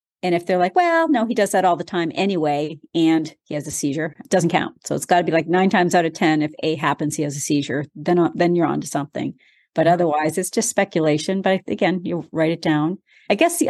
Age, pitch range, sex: 40-59, 155-180 Hz, female